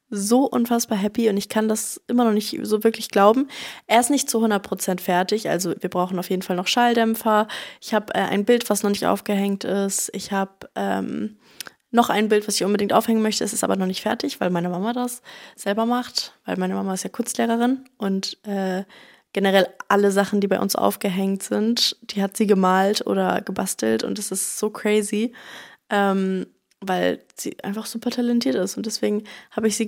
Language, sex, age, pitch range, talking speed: German, female, 20-39, 195-235 Hz, 200 wpm